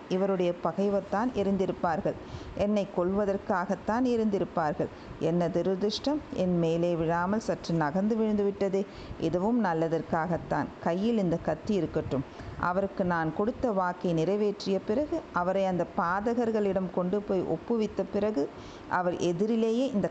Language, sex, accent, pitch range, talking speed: Tamil, female, native, 175-220 Hz, 105 wpm